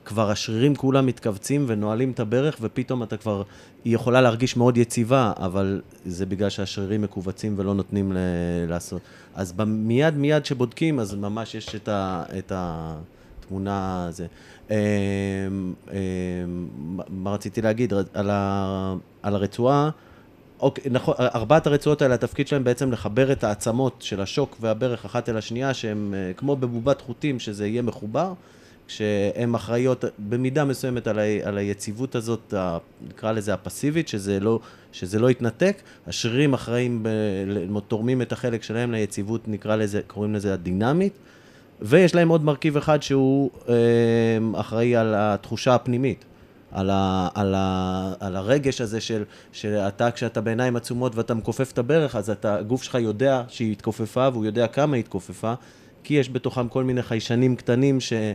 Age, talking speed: 30-49, 150 wpm